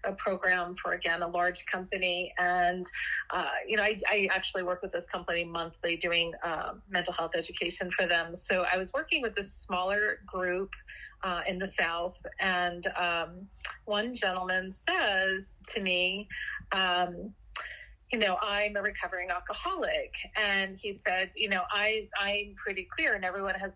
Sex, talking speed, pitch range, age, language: female, 160 wpm, 185-215 Hz, 30-49, English